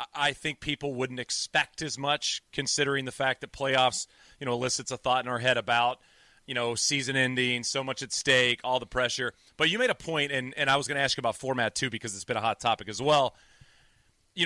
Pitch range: 115-140 Hz